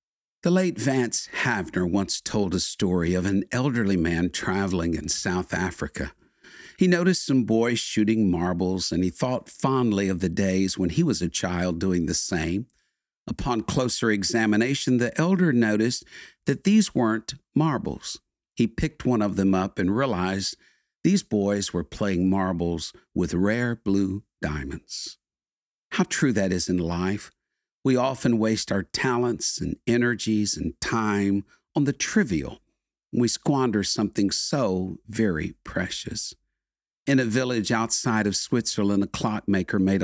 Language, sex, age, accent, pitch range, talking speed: English, male, 50-69, American, 95-125 Hz, 145 wpm